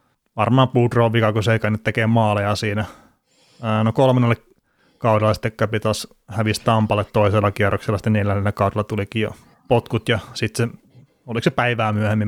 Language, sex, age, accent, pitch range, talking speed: Finnish, male, 30-49, native, 105-120 Hz, 145 wpm